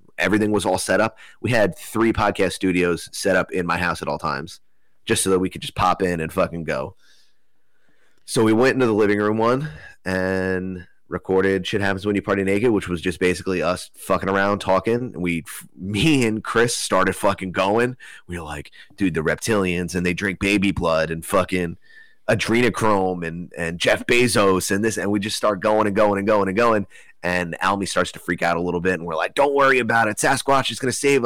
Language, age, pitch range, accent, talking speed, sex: English, 30-49, 90-115 Hz, American, 215 wpm, male